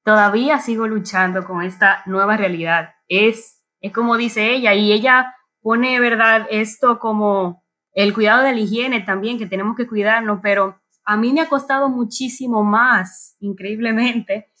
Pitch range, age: 205-265 Hz, 20-39